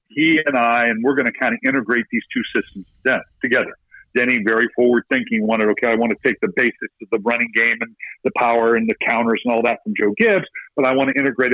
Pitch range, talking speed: 120-165 Hz, 240 wpm